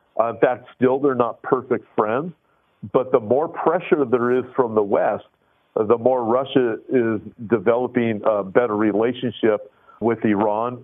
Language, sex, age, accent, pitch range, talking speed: English, male, 50-69, American, 110-140 Hz, 145 wpm